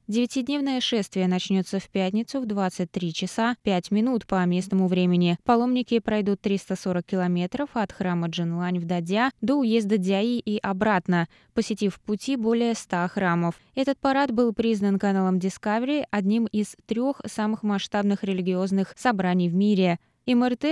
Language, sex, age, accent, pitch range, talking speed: Russian, female, 20-39, native, 190-240 Hz, 140 wpm